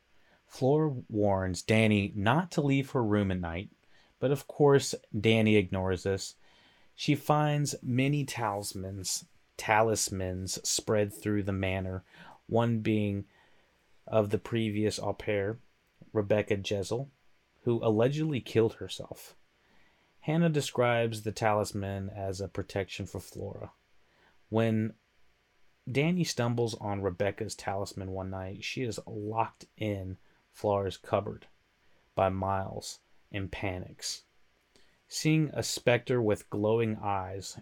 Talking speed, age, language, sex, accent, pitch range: 115 wpm, 30-49, English, male, American, 100-120 Hz